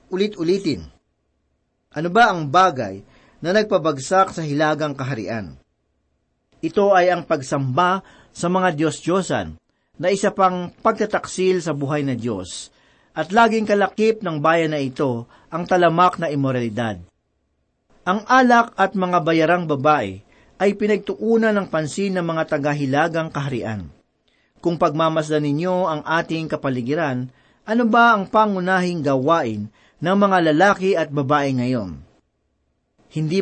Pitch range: 135-185 Hz